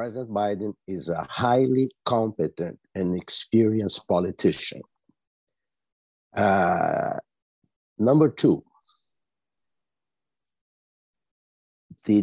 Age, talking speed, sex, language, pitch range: 50-69, 65 wpm, male, Portuguese, 90-125 Hz